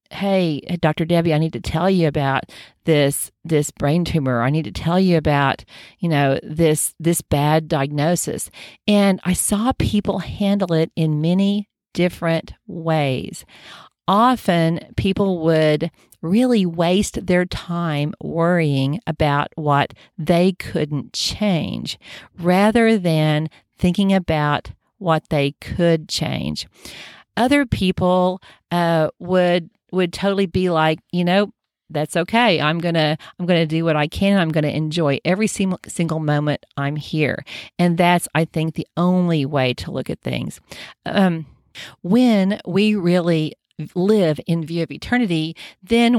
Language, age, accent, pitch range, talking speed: English, 40-59, American, 155-185 Hz, 140 wpm